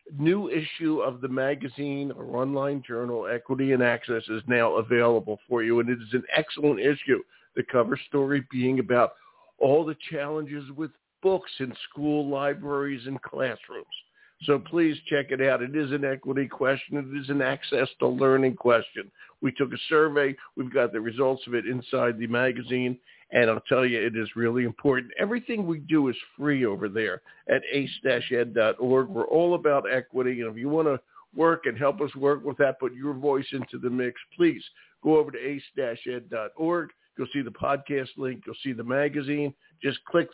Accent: American